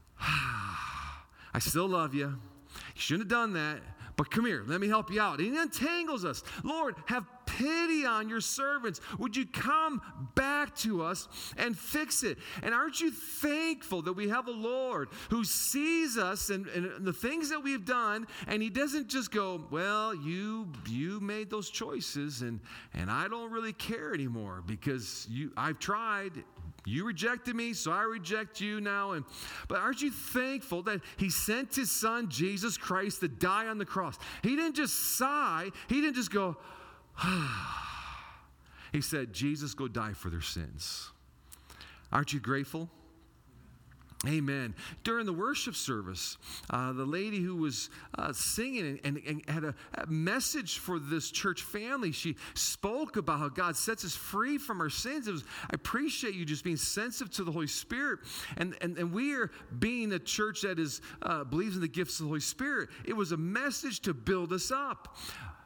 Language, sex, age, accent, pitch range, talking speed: English, male, 40-59, American, 150-235 Hz, 175 wpm